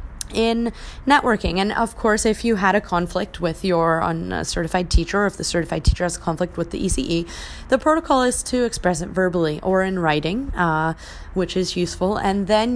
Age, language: 30-49, English